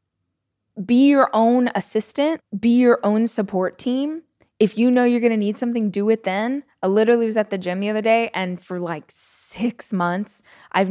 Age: 20-39